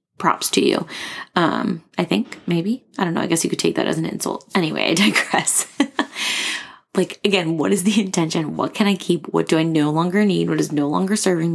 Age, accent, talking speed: 20-39, American, 225 wpm